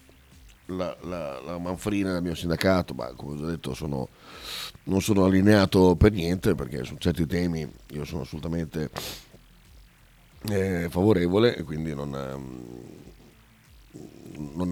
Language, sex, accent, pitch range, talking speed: Italian, male, native, 80-105 Hz, 130 wpm